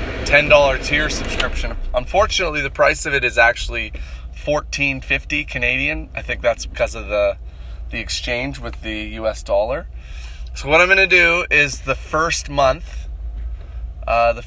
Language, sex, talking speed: English, male, 150 wpm